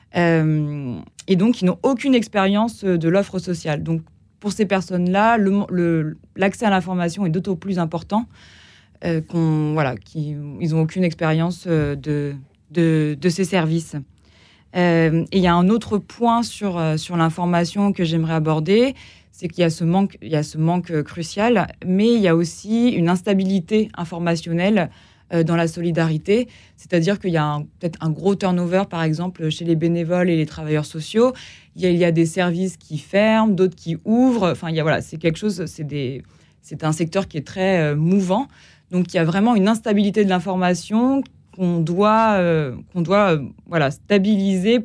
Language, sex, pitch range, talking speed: French, female, 160-195 Hz, 170 wpm